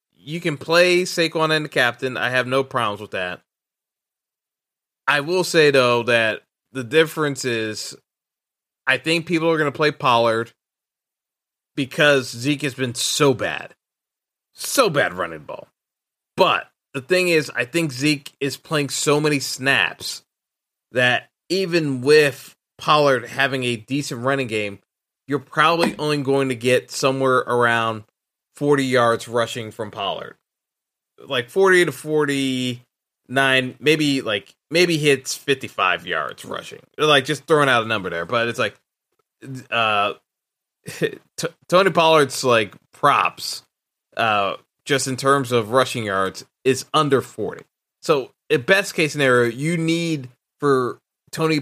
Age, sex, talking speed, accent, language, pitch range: 20-39, male, 140 wpm, American, English, 125-155 Hz